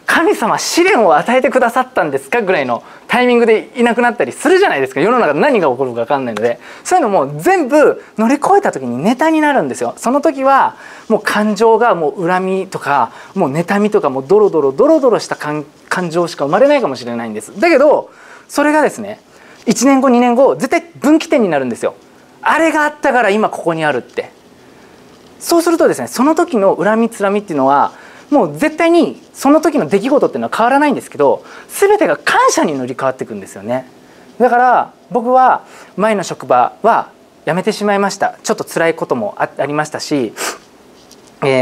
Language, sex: Japanese, male